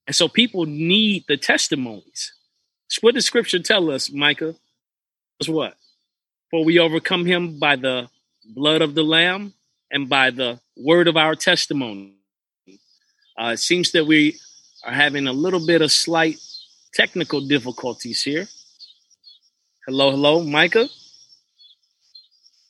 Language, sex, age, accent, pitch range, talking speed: English, male, 30-49, American, 130-160 Hz, 135 wpm